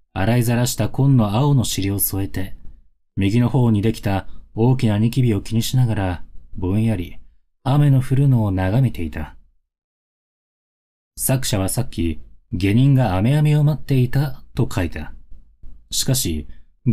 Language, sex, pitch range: Japanese, male, 80-130 Hz